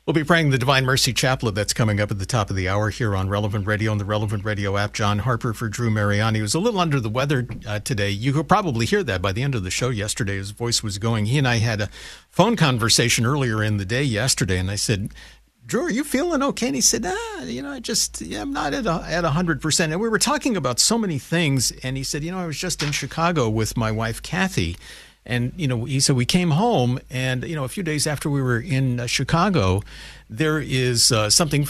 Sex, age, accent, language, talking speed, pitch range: male, 50-69, American, English, 260 wpm, 110-150 Hz